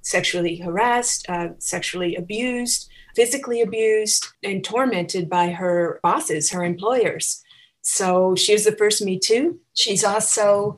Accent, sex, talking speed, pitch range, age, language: American, female, 130 wpm, 185-215 Hz, 40-59, English